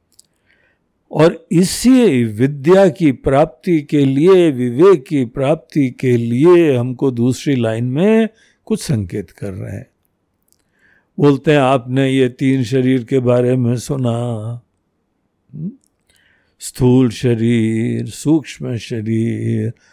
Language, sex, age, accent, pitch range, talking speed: Hindi, male, 60-79, native, 115-160 Hz, 105 wpm